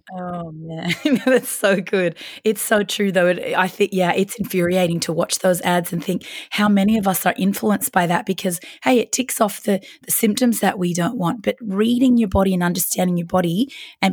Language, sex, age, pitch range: English, female, 20-39, 175-220 Hz